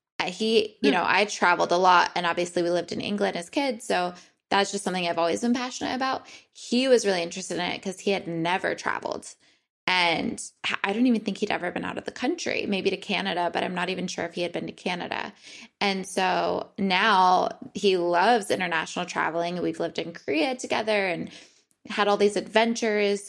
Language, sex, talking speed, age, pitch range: English, female, 200 wpm, 20-39, 175-220 Hz